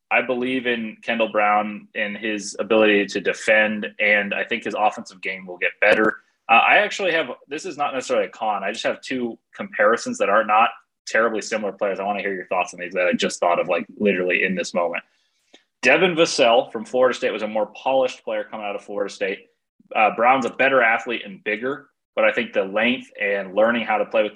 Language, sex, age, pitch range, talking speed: English, male, 20-39, 95-120 Hz, 225 wpm